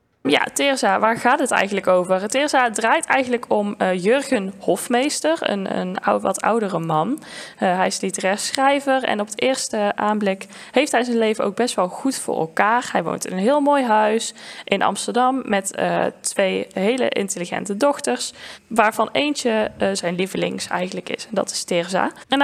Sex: female